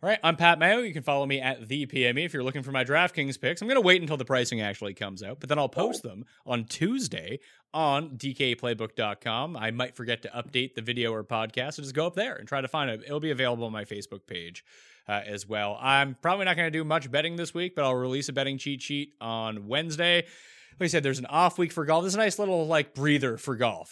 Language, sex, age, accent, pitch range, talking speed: English, male, 30-49, American, 120-170 Hz, 260 wpm